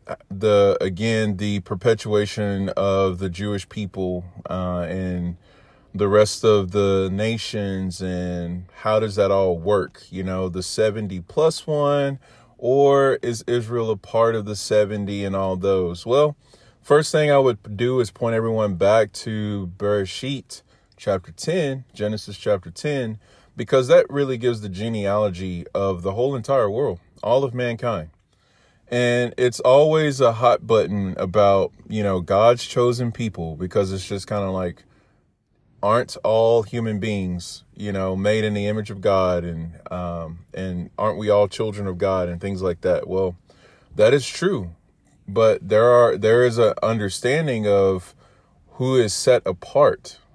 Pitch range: 95-120 Hz